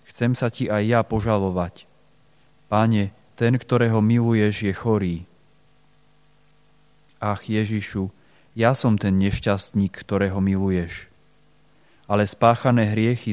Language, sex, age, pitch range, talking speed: Slovak, male, 30-49, 100-125 Hz, 105 wpm